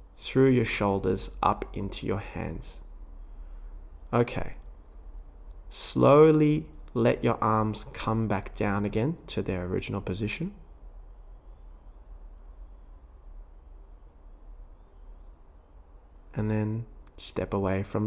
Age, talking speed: 20-39, 85 wpm